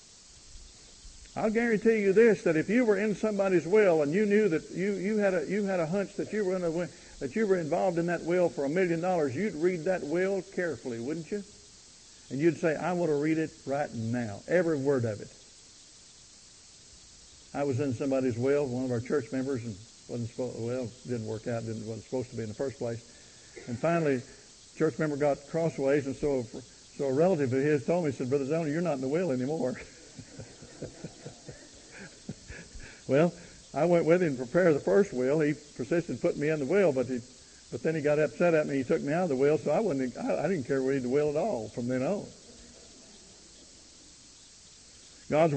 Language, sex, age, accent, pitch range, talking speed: English, male, 60-79, American, 135-190 Hz, 215 wpm